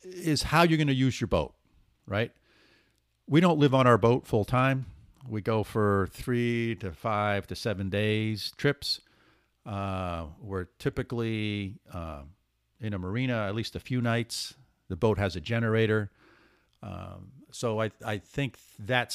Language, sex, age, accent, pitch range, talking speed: English, male, 50-69, American, 100-120 Hz, 155 wpm